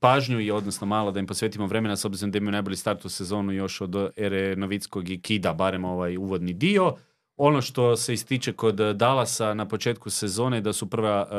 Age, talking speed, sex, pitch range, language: 30-49, 195 wpm, male, 105-130 Hz, Croatian